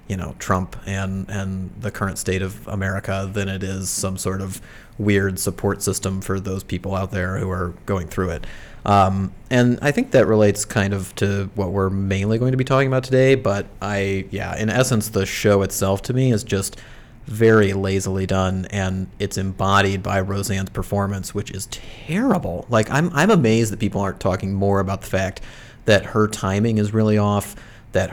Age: 30-49